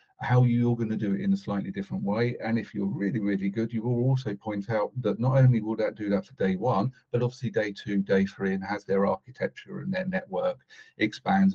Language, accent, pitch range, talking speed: English, British, 105-140 Hz, 240 wpm